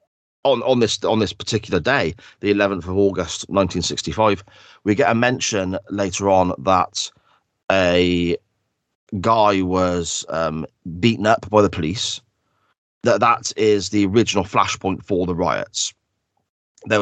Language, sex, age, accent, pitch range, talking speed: English, male, 30-49, British, 90-105 Hz, 135 wpm